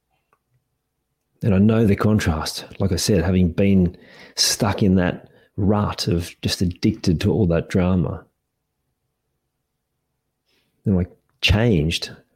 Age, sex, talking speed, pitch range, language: 40-59, male, 115 wpm, 90-110 Hz, English